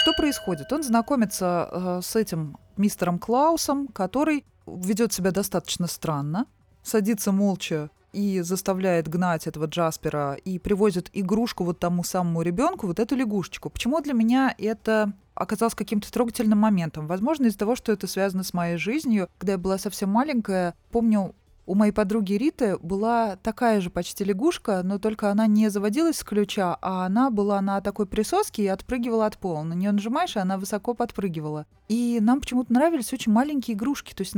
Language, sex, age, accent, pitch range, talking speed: Russian, female, 20-39, native, 190-240 Hz, 170 wpm